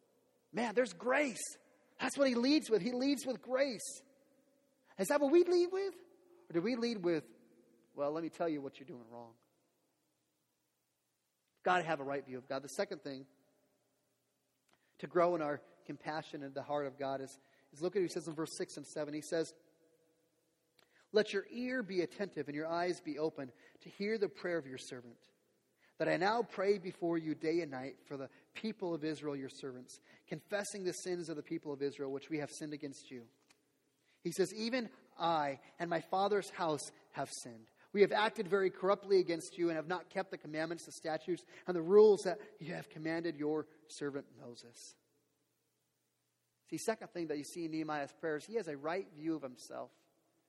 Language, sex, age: English, male, 30-49